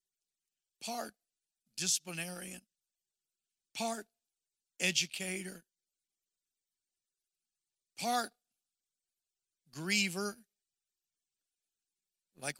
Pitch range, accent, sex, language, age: 180-255 Hz, American, male, English, 60-79